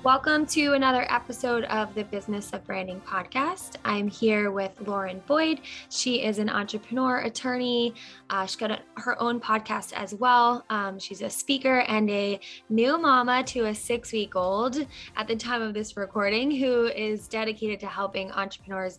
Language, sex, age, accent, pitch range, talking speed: English, female, 10-29, American, 195-235 Hz, 170 wpm